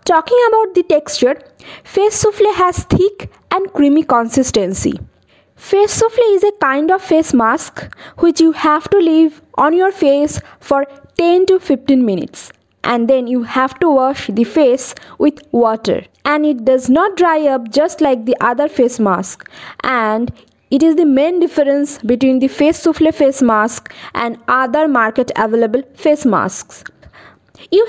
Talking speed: 155 wpm